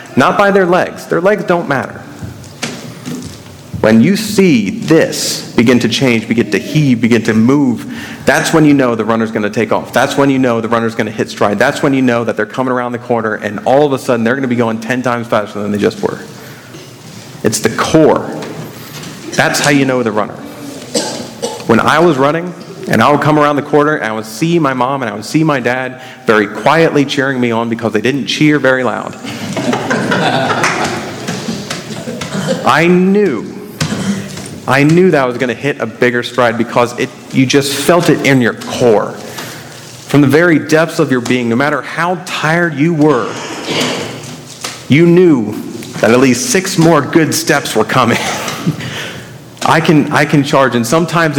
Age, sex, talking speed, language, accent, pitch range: 40-59, male, 190 wpm, English, American, 120-155 Hz